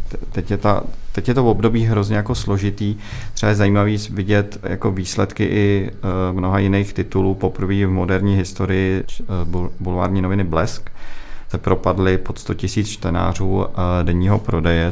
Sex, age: male, 40-59